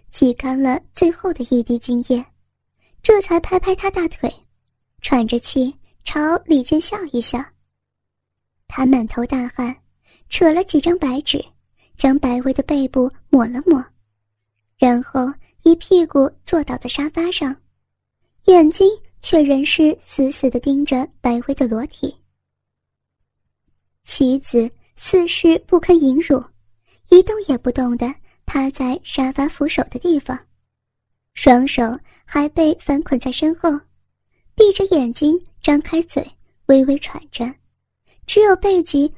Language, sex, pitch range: Chinese, male, 250-330 Hz